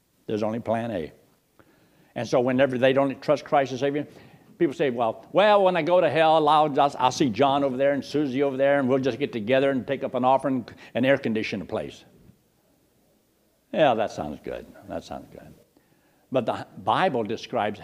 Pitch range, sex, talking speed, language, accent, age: 120-140 Hz, male, 190 wpm, English, American, 60-79